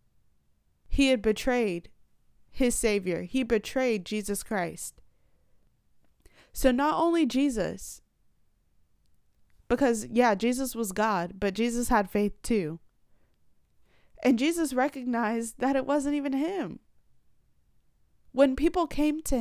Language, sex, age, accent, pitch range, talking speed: English, female, 30-49, American, 195-260 Hz, 110 wpm